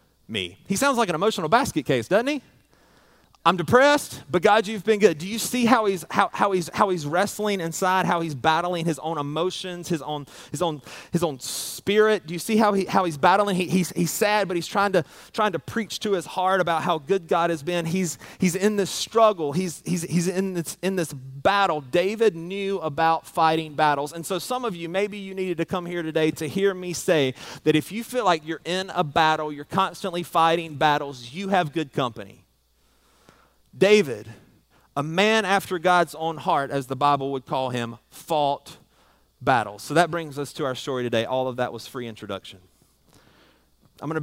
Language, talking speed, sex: English, 205 wpm, male